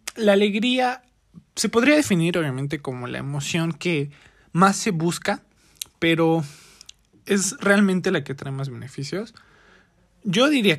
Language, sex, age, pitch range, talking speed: Spanish, male, 20-39, 150-190 Hz, 130 wpm